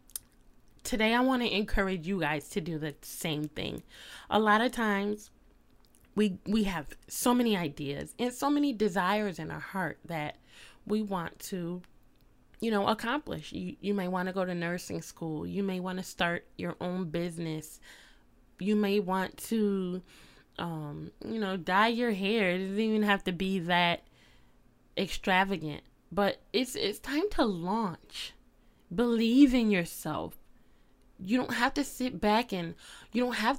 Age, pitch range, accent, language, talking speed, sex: 10-29, 185-230 Hz, American, English, 160 wpm, female